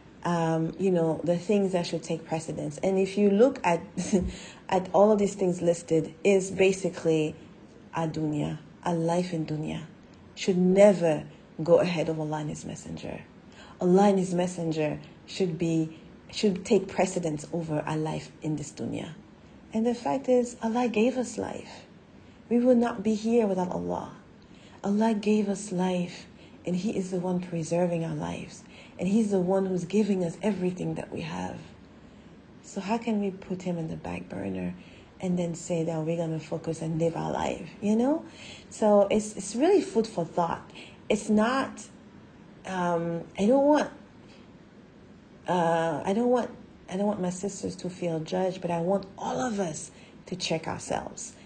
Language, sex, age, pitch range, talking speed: English, female, 40-59, 165-205 Hz, 175 wpm